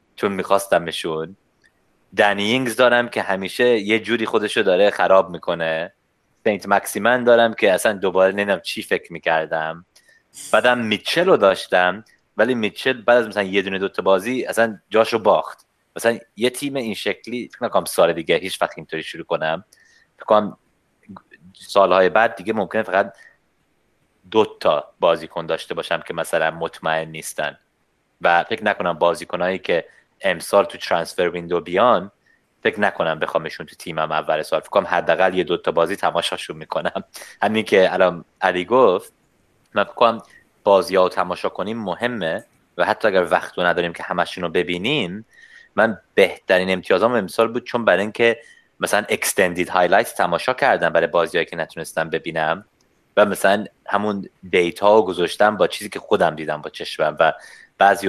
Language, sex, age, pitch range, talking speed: Persian, male, 30-49, 90-110 Hz, 150 wpm